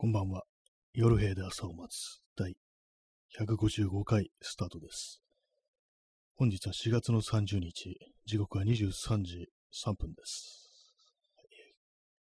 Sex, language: male, Japanese